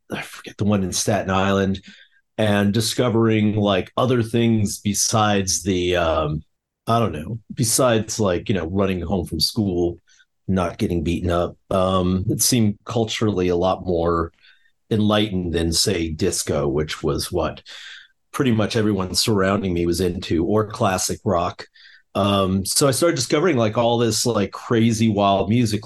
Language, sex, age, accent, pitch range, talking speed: English, male, 40-59, American, 95-115 Hz, 155 wpm